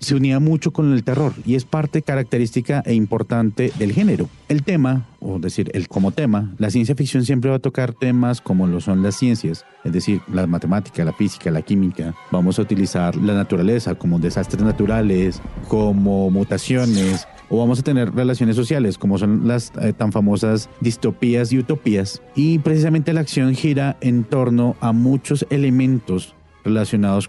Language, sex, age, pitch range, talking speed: Spanish, male, 40-59, 100-130 Hz, 170 wpm